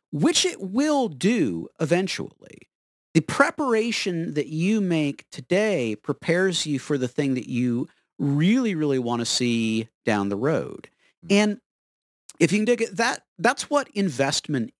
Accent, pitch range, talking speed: American, 140-195 Hz, 145 wpm